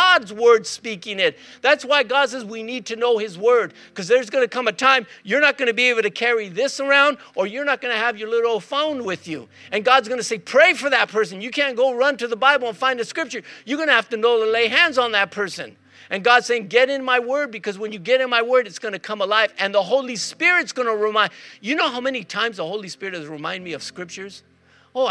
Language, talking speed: English, 270 wpm